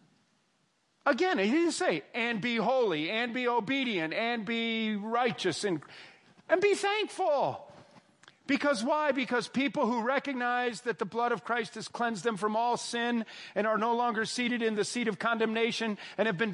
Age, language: 40-59, English